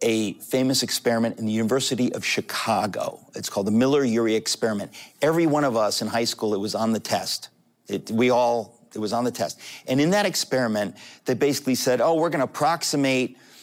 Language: English